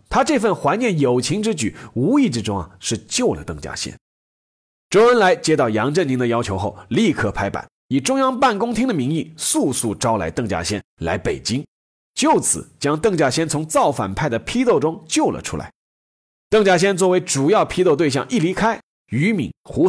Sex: male